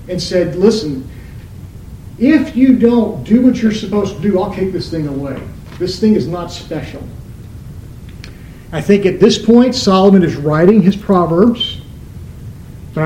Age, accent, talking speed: 50-69, American, 150 wpm